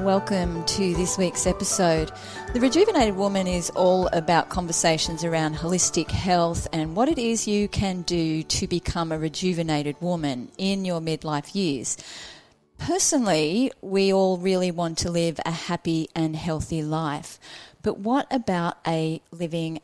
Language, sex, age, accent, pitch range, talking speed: English, female, 30-49, Australian, 165-205 Hz, 145 wpm